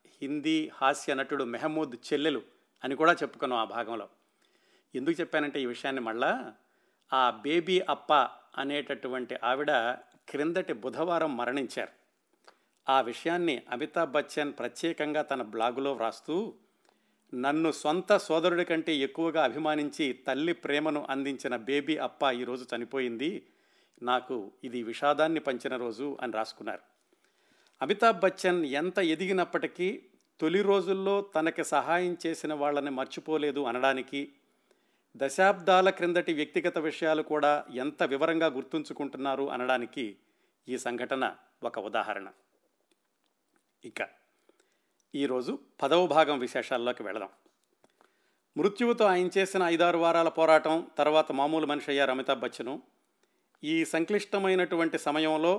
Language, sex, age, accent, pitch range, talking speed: Telugu, male, 50-69, native, 135-175 Hz, 105 wpm